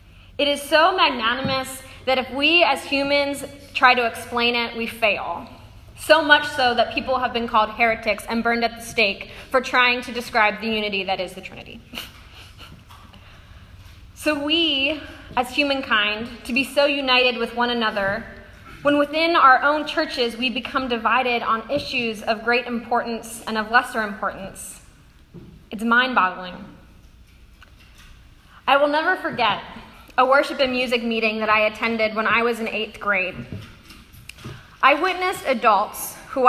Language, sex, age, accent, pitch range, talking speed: English, female, 20-39, American, 215-280 Hz, 150 wpm